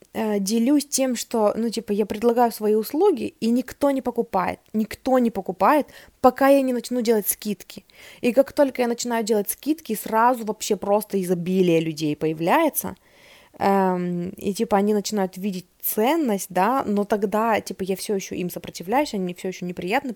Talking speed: 160 wpm